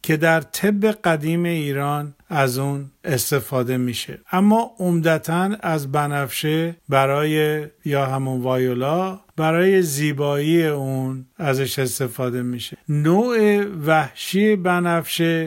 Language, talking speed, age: Persian, 100 wpm, 50-69